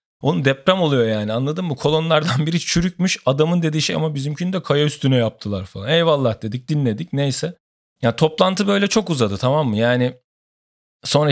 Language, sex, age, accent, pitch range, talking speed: Turkish, male, 40-59, native, 130-180 Hz, 175 wpm